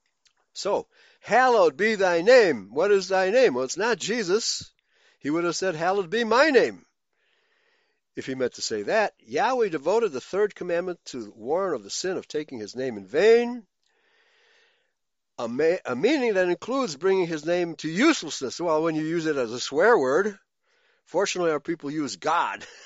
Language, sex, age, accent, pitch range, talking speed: English, male, 60-79, American, 135-220 Hz, 175 wpm